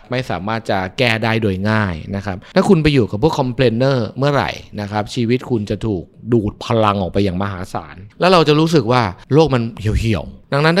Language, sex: Thai, male